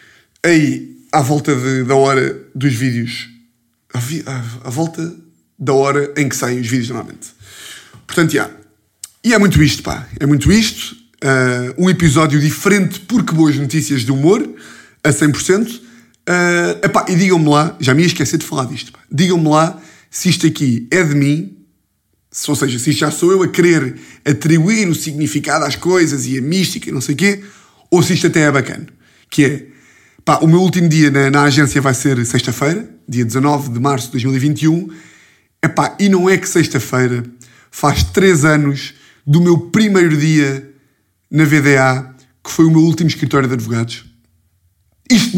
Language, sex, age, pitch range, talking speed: Portuguese, male, 20-39, 130-170 Hz, 175 wpm